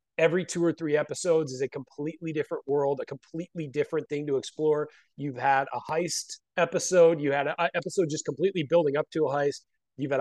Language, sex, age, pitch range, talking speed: English, male, 30-49, 145-190 Hz, 200 wpm